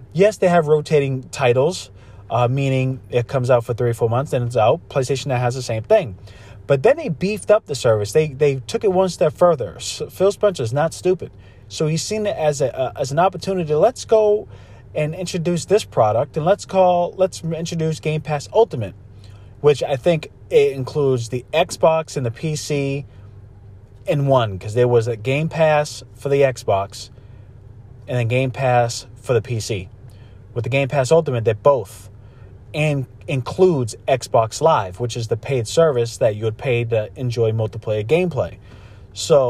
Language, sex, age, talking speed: English, male, 30-49, 185 wpm